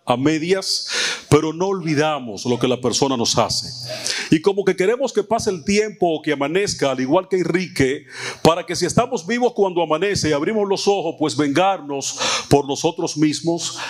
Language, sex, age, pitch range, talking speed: Spanish, male, 40-59, 155-210 Hz, 180 wpm